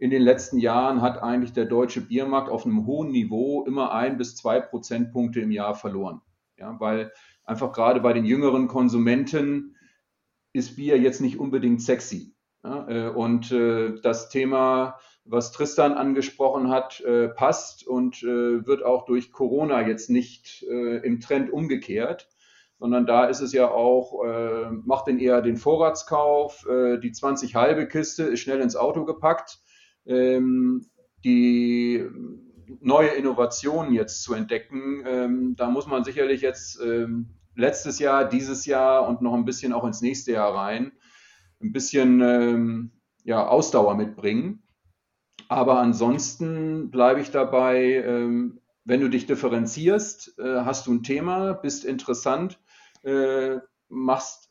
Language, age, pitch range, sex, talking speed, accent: German, 40-59, 120-135 Hz, male, 140 wpm, German